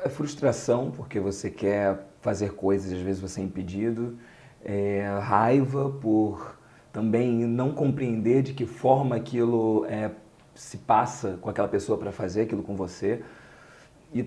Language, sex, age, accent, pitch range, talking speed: Portuguese, male, 40-59, Brazilian, 100-130 Hz, 145 wpm